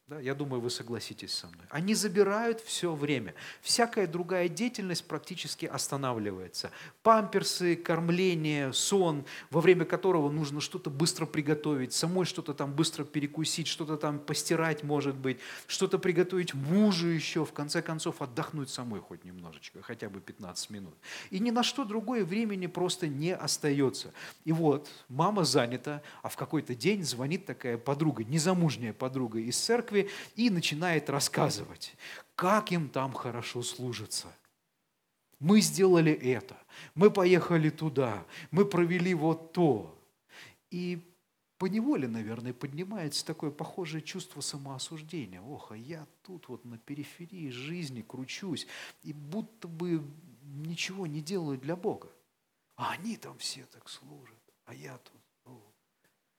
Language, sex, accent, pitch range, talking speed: Russian, male, native, 135-180 Hz, 135 wpm